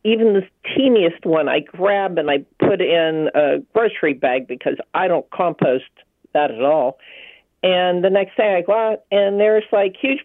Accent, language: American, English